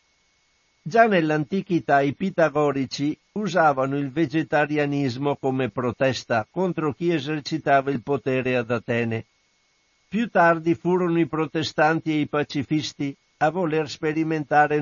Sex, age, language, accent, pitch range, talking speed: male, 60-79, Italian, native, 135-165 Hz, 110 wpm